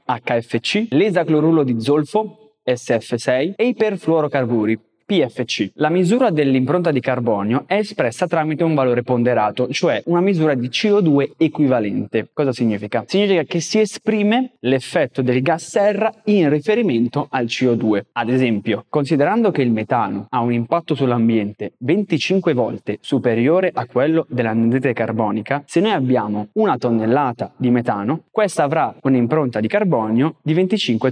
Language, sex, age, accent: Italian, male, 20-39, native